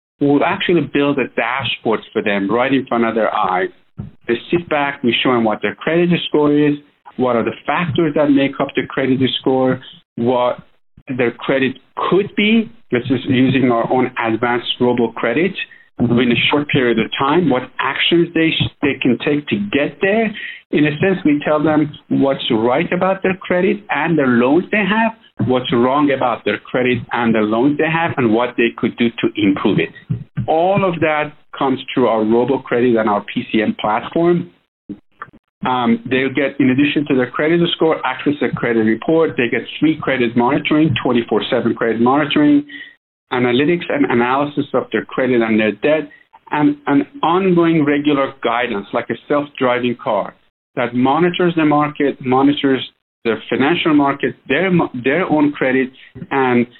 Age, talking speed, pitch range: 50-69, 170 wpm, 125-160 Hz